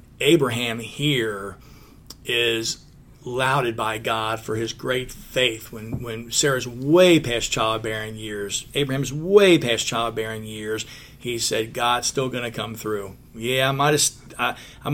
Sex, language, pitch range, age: male, English, 115-145 Hz, 40-59